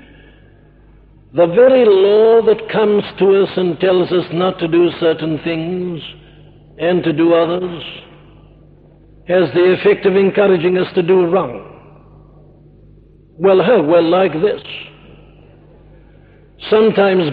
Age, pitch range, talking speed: 60-79, 165-195 Hz, 120 wpm